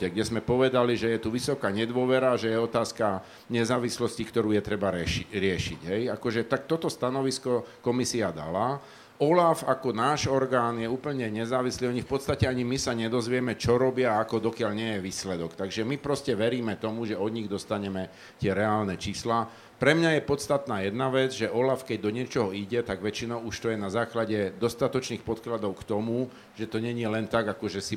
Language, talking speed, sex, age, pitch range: Slovak, 185 wpm, male, 50-69, 110-135 Hz